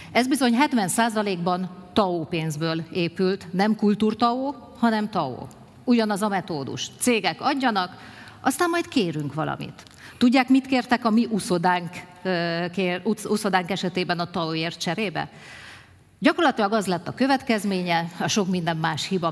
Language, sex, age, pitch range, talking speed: Hungarian, female, 50-69, 165-220 Hz, 120 wpm